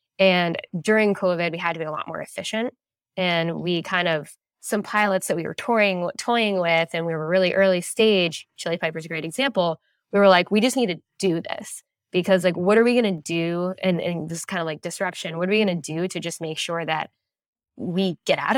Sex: female